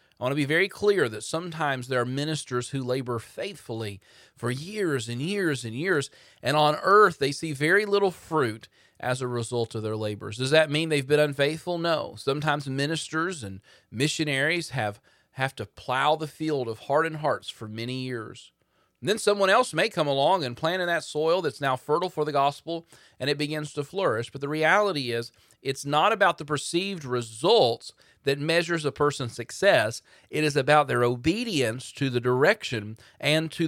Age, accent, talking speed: 40-59, American, 185 wpm